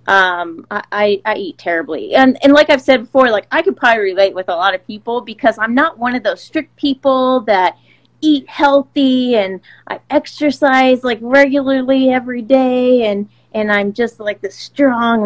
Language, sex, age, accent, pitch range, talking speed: English, female, 30-49, American, 195-260 Hz, 180 wpm